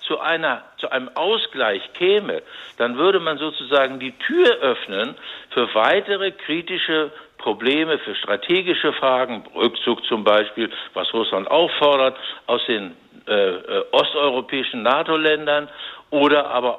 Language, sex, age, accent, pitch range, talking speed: German, male, 60-79, German, 130-175 Hz, 120 wpm